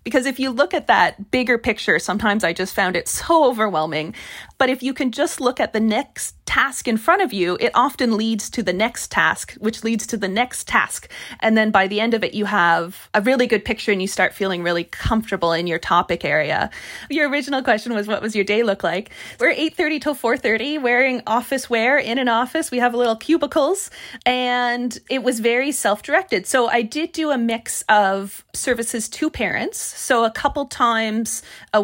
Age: 30-49